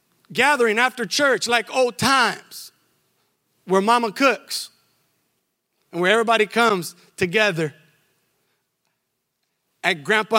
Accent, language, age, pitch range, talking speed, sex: American, English, 30-49, 180-235 Hz, 90 wpm, male